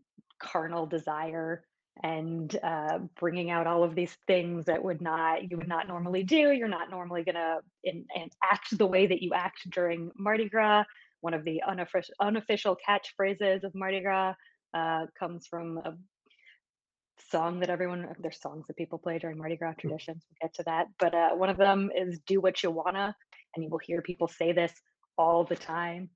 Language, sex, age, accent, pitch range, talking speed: English, female, 20-39, American, 165-200 Hz, 190 wpm